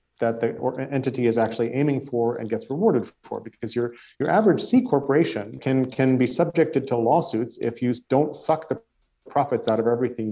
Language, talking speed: English, 185 wpm